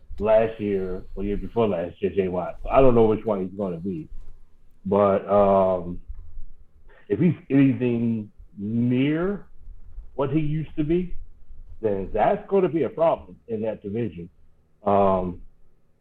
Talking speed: 150 wpm